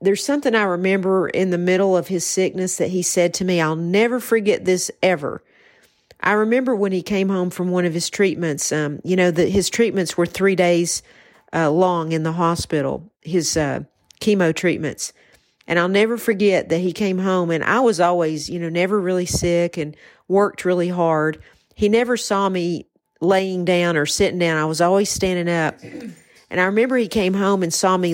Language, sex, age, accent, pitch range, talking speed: English, female, 50-69, American, 165-195 Hz, 195 wpm